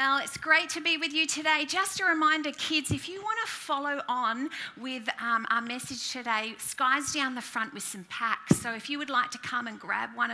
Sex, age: female, 40-59